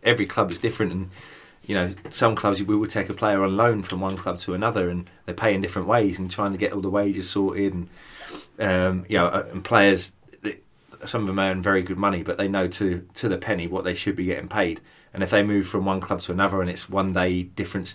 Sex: male